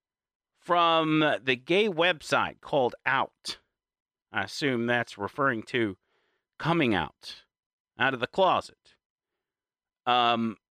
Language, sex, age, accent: English, male, 40-59, American